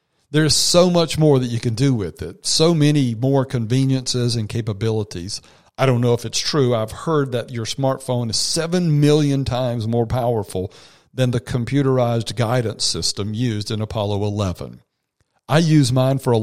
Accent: American